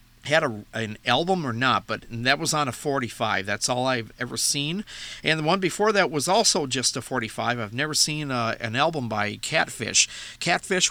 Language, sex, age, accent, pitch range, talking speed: English, male, 50-69, American, 115-160 Hz, 200 wpm